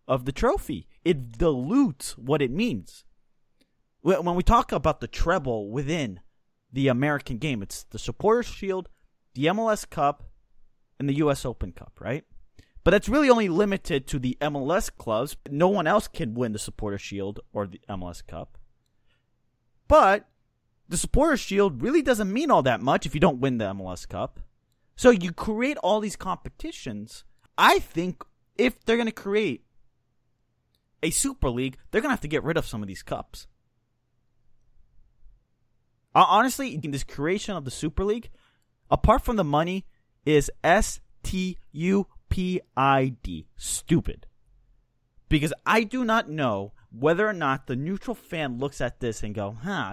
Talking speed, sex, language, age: 155 wpm, male, English, 30-49